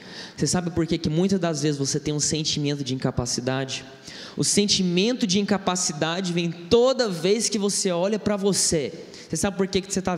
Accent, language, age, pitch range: Brazilian, Portuguese, 20-39, 160-210 Hz